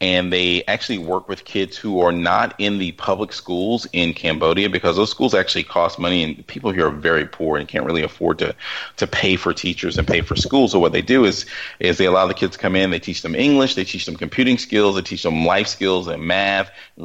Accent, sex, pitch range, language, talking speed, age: American, male, 85-95 Hz, English, 245 wpm, 30-49